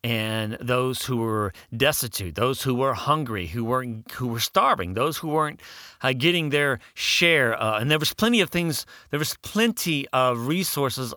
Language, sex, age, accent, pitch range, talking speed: English, male, 40-59, American, 95-135 Hz, 175 wpm